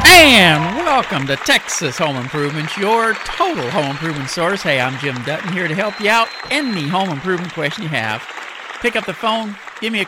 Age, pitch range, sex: 50-69, 125-185 Hz, male